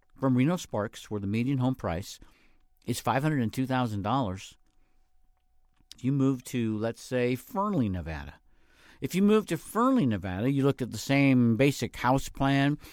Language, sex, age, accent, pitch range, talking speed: English, male, 50-69, American, 105-135 Hz, 140 wpm